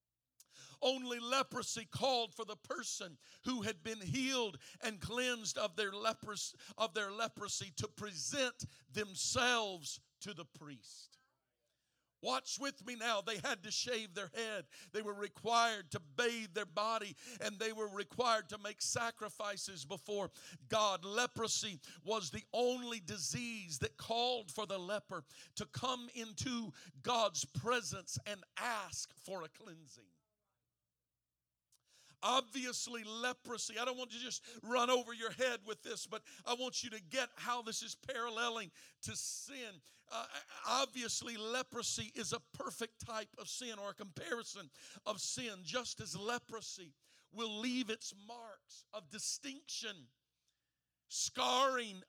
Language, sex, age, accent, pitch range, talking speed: English, male, 50-69, American, 190-240 Hz, 135 wpm